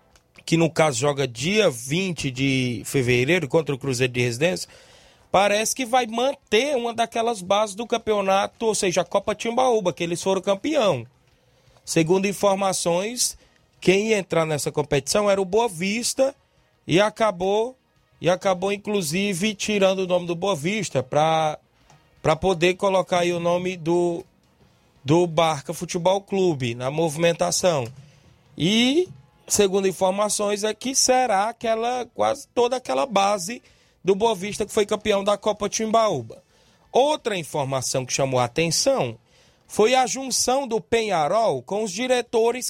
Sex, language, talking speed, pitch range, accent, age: male, Portuguese, 140 wpm, 165-230 Hz, Brazilian, 20-39